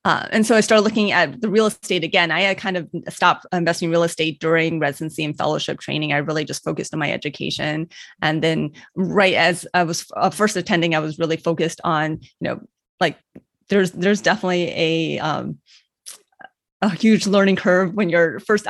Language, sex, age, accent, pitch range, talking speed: English, female, 30-49, American, 170-210 Hz, 195 wpm